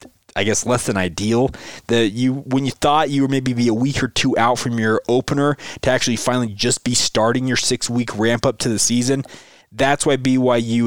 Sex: male